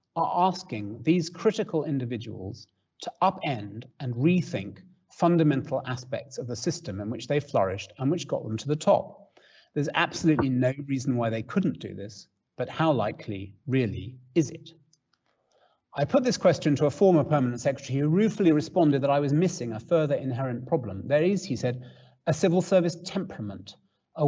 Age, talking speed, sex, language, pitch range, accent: 40-59, 170 wpm, male, English, 115-155 Hz, British